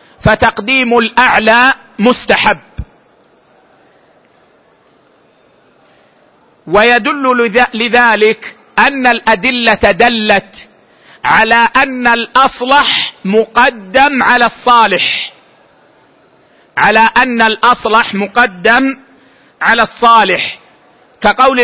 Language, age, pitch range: Arabic, 50-69, 220-250 Hz